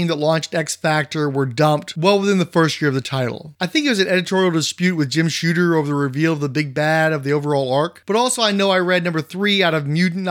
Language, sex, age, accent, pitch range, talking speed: English, male, 30-49, American, 155-190 Hz, 260 wpm